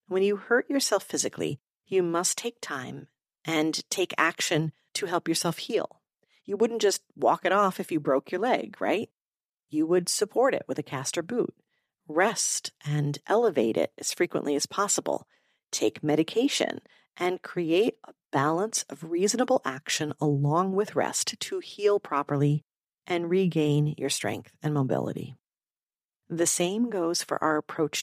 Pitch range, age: 150-185 Hz, 40-59